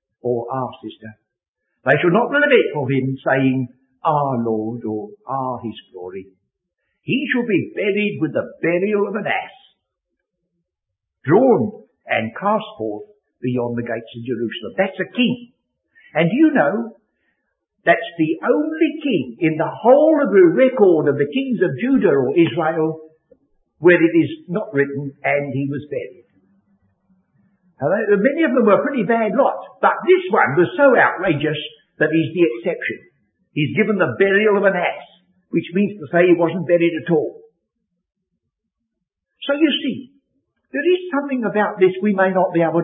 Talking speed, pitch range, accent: 160 wpm, 135-215 Hz, British